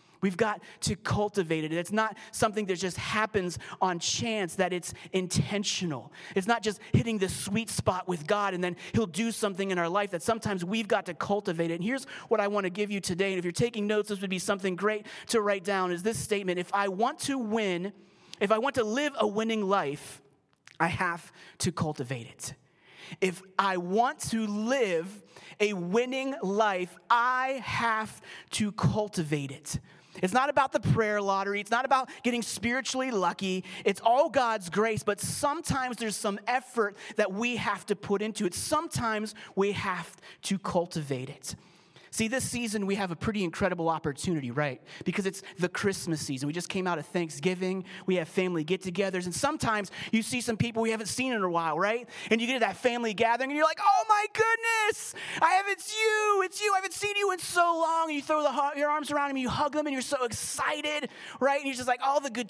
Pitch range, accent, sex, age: 185-255 Hz, American, male, 30-49